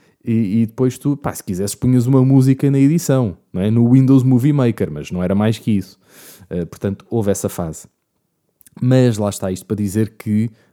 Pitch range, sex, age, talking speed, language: 100-140 Hz, male, 20-39, 175 wpm, Portuguese